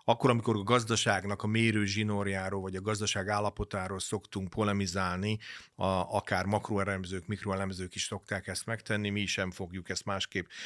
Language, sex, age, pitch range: Hungarian, male, 40-59, 95-110 Hz